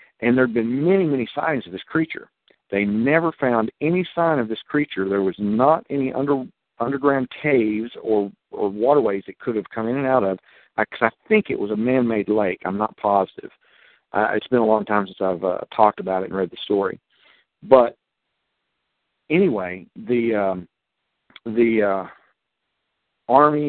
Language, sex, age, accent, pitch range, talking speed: English, male, 50-69, American, 100-135 Hz, 180 wpm